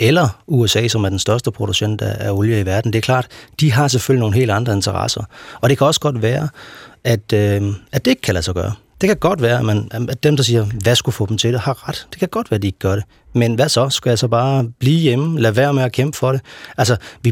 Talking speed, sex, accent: 280 wpm, male, native